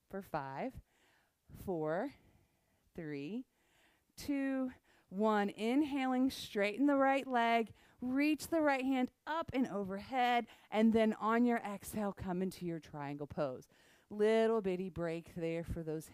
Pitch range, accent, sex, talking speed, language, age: 190-250 Hz, American, female, 125 wpm, English, 40-59